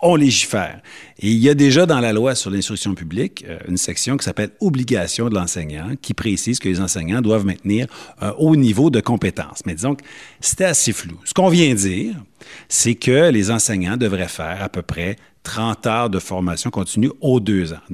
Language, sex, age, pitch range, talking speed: French, male, 50-69, 95-145 Hz, 205 wpm